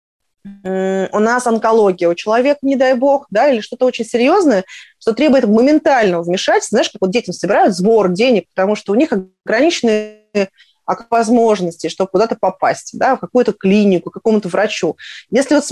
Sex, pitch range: female, 200-275 Hz